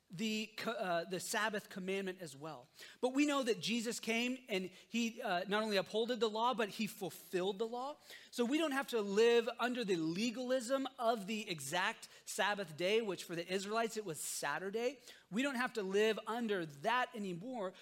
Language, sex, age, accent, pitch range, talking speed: English, male, 30-49, American, 185-240 Hz, 185 wpm